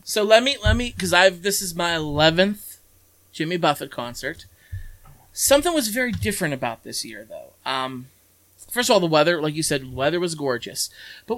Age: 20-39